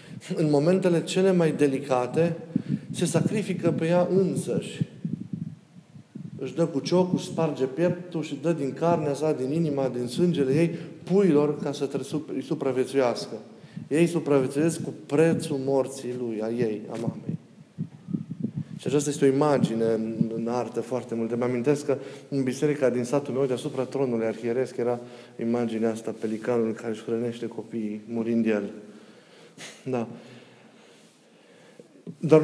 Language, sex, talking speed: Romanian, male, 135 wpm